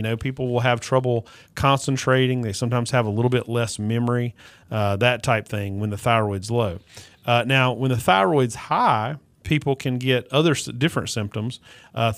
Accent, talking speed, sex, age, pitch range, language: American, 175 wpm, male, 40-59, 110-130 Hz, English